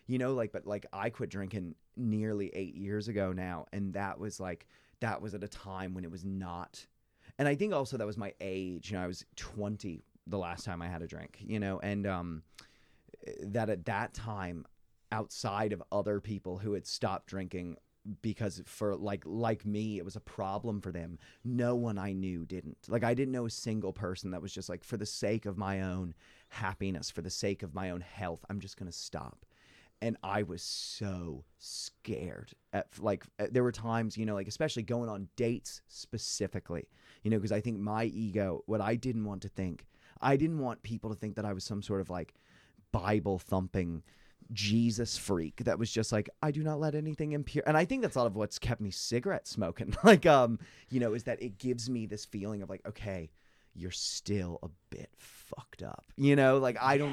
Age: 30-49